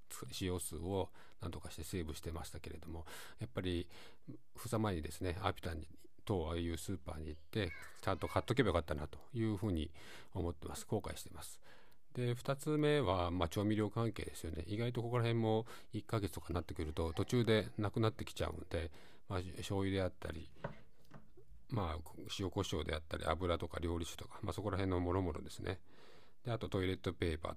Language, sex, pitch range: Japanese, male, 85-105 Hz